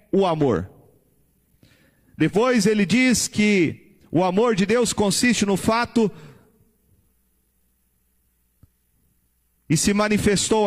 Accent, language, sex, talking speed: Brazilian, Portuguese, male, 90 wpm